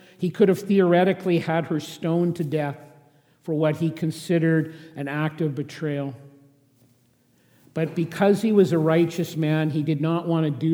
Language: English